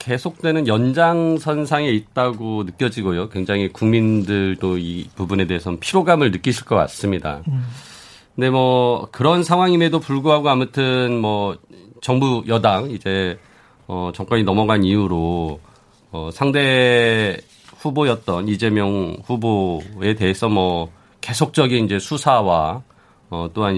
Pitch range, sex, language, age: 100-145 Hz, male, Korean, 40-59